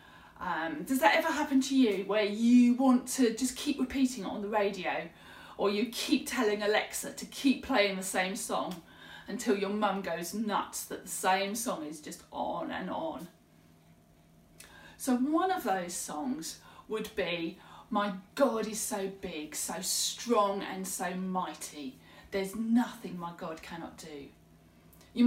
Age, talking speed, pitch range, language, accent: 30-49, 160 wpm, 185-260 Hz, English, British